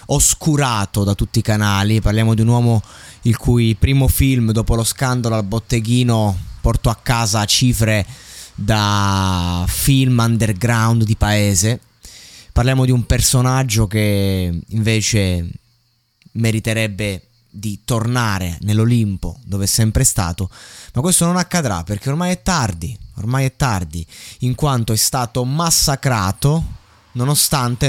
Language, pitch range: Italian, 105-140 Hz